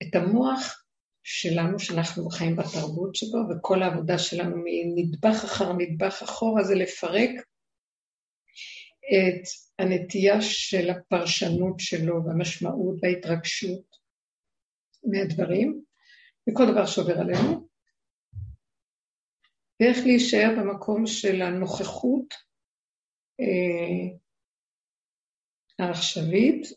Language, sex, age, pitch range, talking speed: Hebrew, female, 50-69, 180-225 Hz, 75 wpm